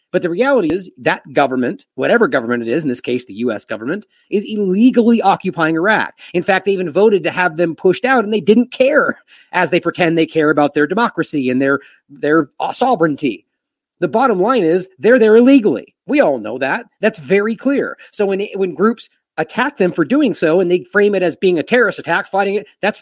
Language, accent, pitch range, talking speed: English, American, 155-215 Hz, 215 wpm